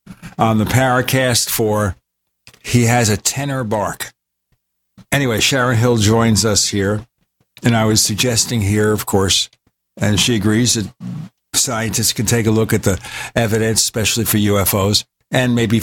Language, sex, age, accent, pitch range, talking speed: English, male, 60-79, American, 105-125 Hz, 155 wpm